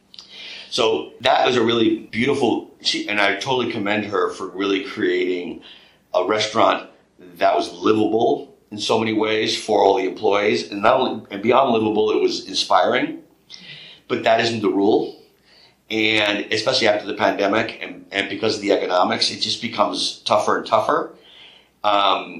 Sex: male